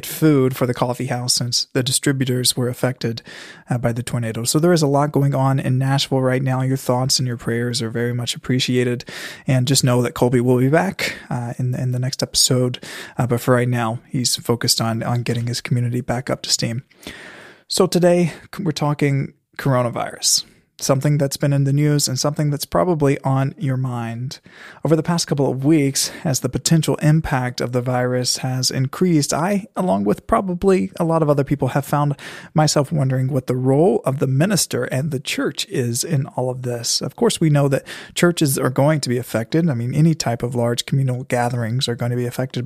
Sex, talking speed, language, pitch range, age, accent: male, 210 wpm, English, 125-150 Hz, 20-39, American